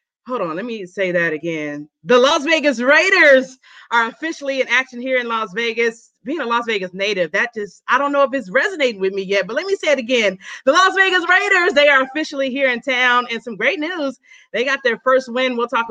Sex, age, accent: female, 30-49, American